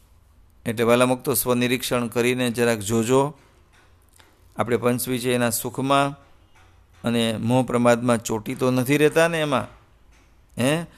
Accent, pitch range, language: Indian, 100-145 Hz, English